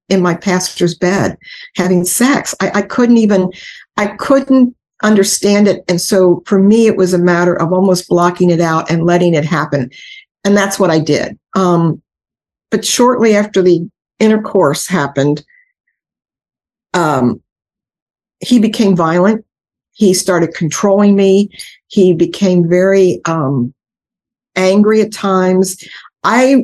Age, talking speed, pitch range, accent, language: 50-69, 135 wpm, 175-215 Hz, American, English